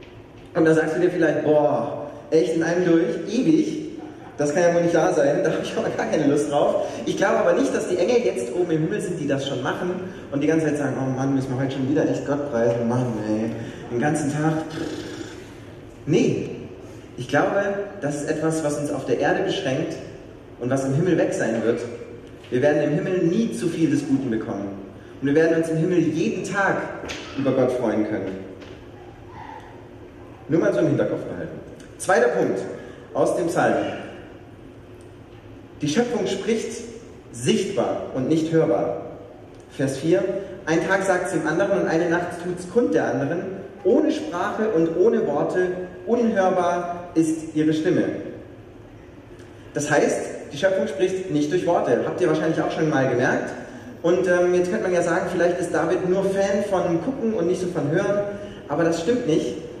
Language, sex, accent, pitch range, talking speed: German, male, German, 125-180 Hz, 185 wpm